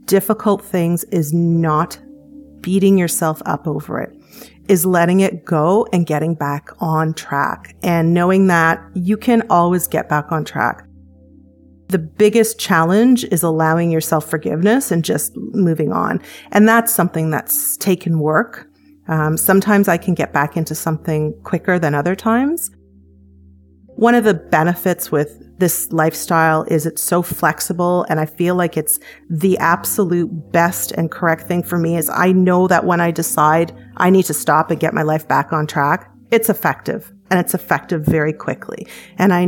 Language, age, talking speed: English, 30-49, 165 wpm